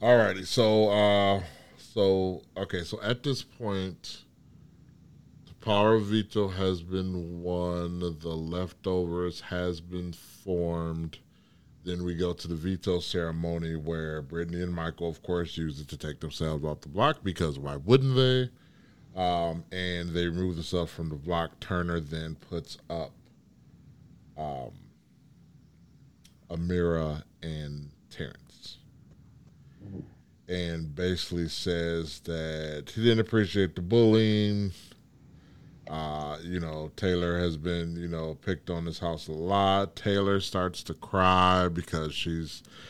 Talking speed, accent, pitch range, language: 130 wpm, American, 80-100 Hz, English